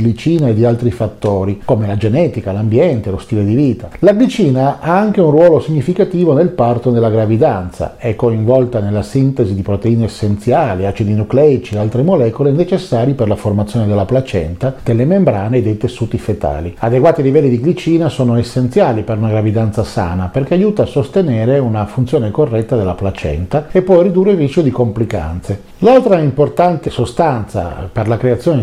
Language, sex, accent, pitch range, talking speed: Italian, male, native, 110-155 Hz, 170 wpm